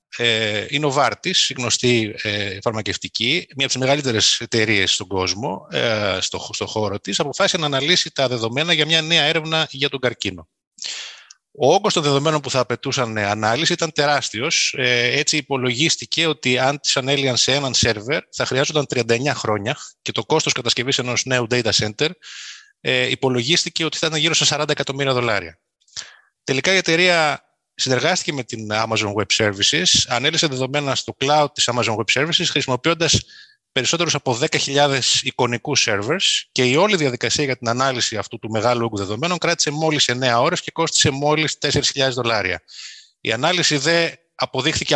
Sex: male